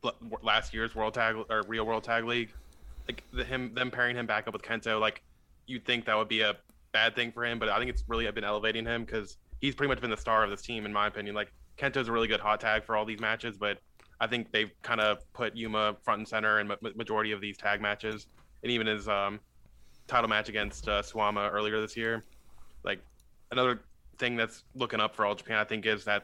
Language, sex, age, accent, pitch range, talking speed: English, male, 20-39, American, 105-115 Hz, 240 wpm